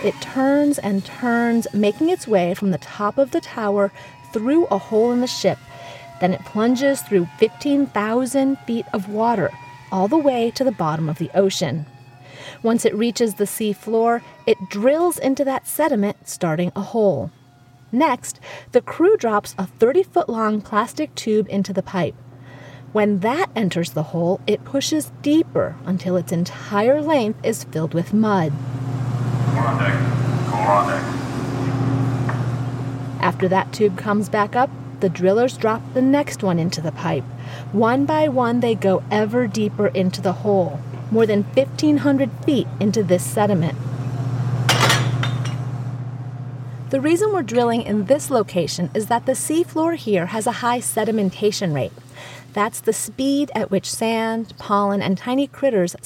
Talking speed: 145 wpm